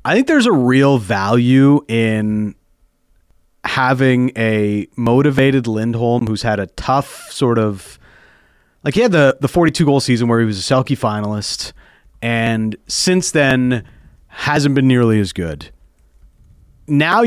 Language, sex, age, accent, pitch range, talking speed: English, male, 30-49, American, 110-150 Hz, 135 wpm